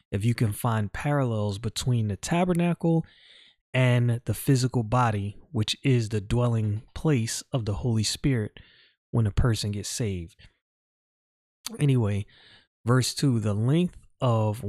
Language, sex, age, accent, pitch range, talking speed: English, male, 30-49, American, 105-135 Hz, 130 wpm